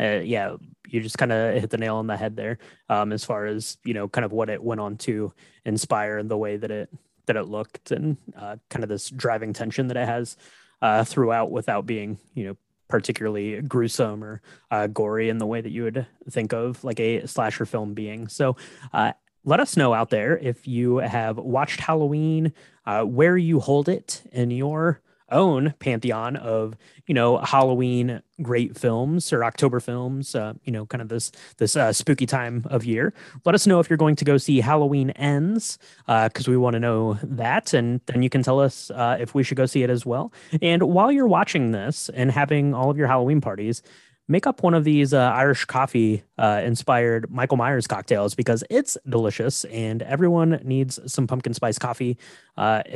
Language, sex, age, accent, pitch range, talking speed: English, male, 20-39, American, 115-145 Hz, 205 wpm